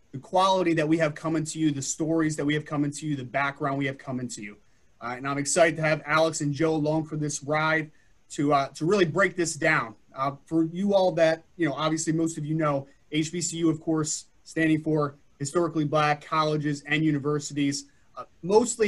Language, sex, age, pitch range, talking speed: English, male, 30-49, 145-170 Hz, 215 wpm